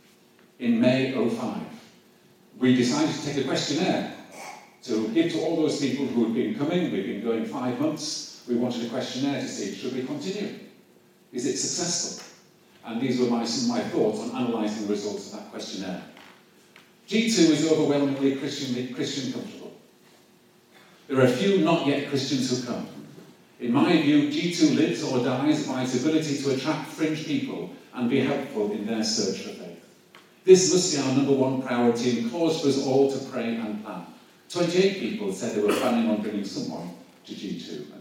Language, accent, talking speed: English, British, 185 wpm